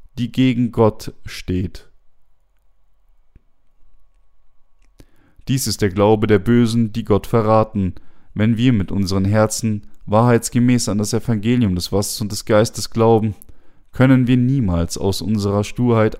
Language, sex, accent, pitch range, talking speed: German, male, German, 95-115 Hz, 125 wpm